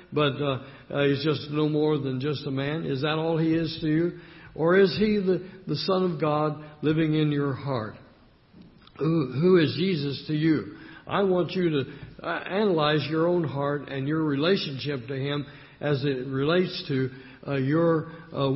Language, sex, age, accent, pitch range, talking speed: English, male, 60-79, American, 135-165 Hz, 185 wpm